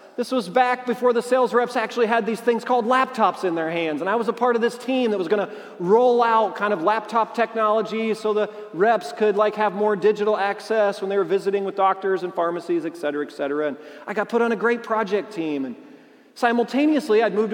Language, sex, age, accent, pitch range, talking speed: English, male, 40-59, American, 210-255 Hz, 235 wpm